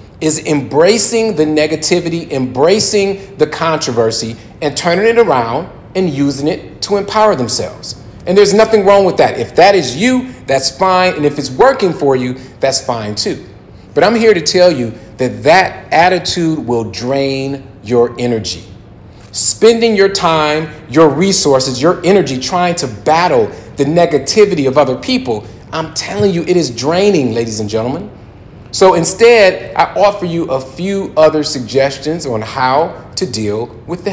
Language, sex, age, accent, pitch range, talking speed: English, male, 40-59, American, 130-190 Hz, 160 wpm